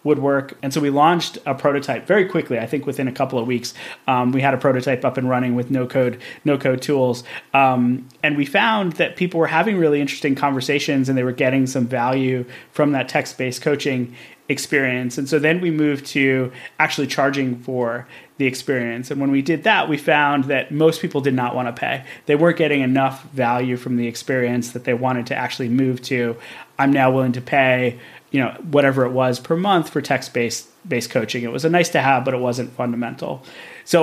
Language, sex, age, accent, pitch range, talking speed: English, male, 30-49, American, 125-145 Hz, 215 wpm